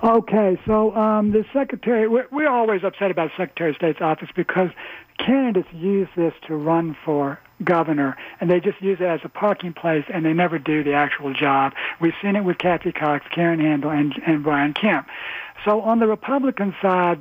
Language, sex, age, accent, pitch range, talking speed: English, male, 60-79, American, 155-190 Hz, 195 wpm